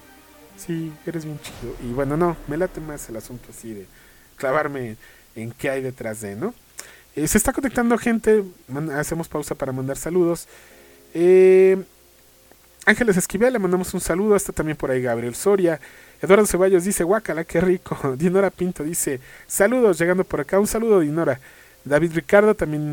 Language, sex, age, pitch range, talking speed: English, male, 40-59, 130-180 Hz, 165 wpm